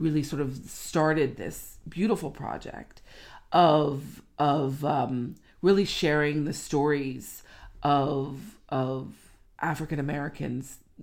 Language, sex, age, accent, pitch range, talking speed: English, female, 40-59, American, 130-155 Hz, 100 wpm